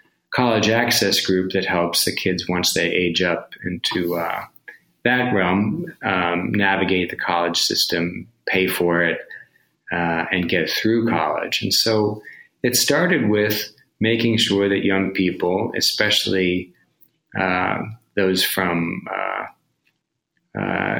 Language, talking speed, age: English, 125 wpm, 30-49